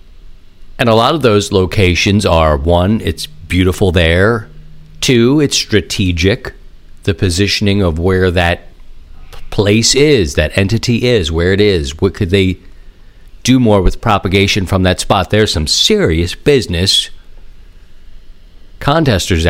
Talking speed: 130 wpm